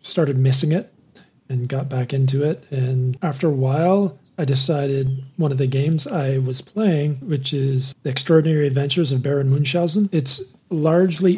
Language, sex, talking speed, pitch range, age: English, male, 165 wpm, 130-160 Hz, 40-59